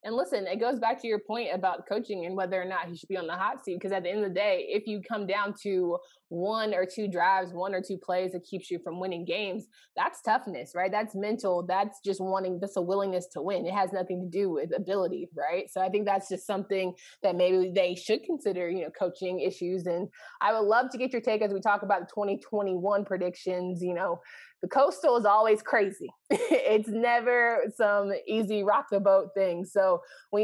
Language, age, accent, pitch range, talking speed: English, 20-39, American, 190-220 Hz, 225 wpm